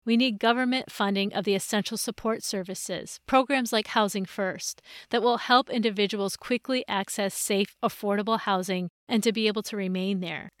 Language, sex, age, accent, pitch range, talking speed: English, female, 40-59, American, 200-235 Hz, 165 wpm